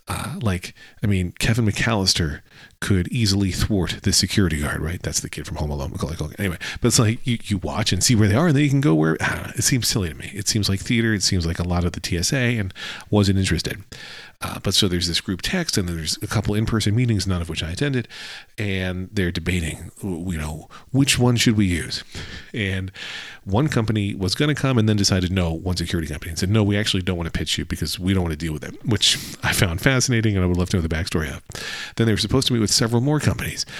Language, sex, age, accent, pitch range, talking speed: English, male, 40-59, American, 90-115 Hz, 250 wpm